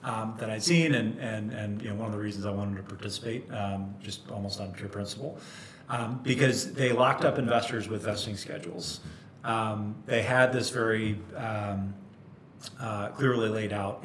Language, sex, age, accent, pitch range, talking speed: English, male, 30-49, American, 105-125 Hz, 180 wpm